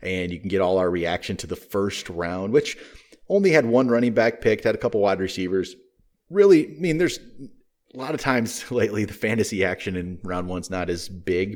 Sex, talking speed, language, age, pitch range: male, 215 wpm, English, 30-49, 95-115 Hz